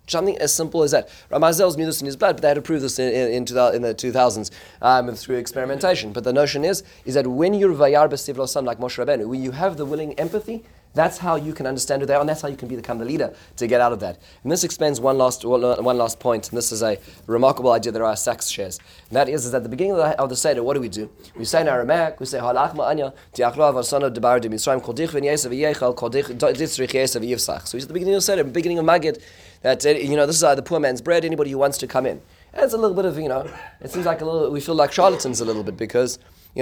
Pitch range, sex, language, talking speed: 120-155 Hz, male, English, 250 wpm